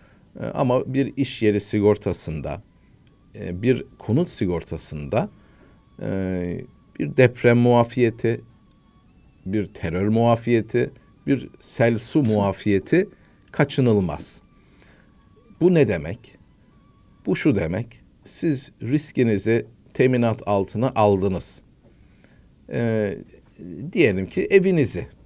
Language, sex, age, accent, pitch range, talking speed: Turkish, male, 50-69, native, 95-120 Hz, 80 wpm